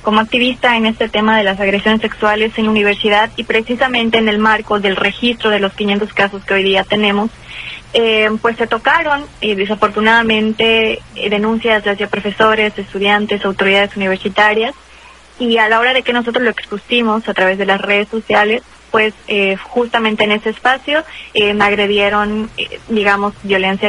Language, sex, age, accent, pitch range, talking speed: Spanish, female, 20-39, Mexican, 200-230 Hz, 165 wpm